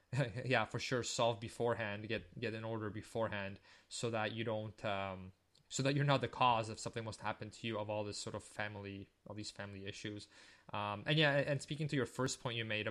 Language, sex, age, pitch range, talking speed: English, male, 20-39, 105-125 Hz, 225 wpm